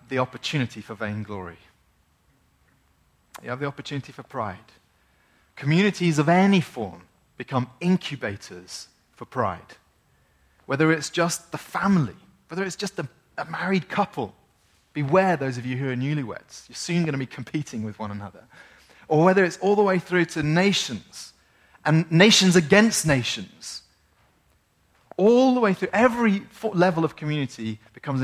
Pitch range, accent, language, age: 105-170 Hz, British, English, 30-49